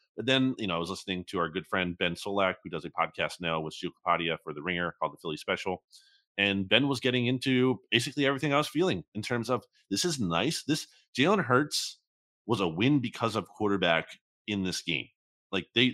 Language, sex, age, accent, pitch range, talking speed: English, male, 30-49, American, 95-140 Hz, 220 wpm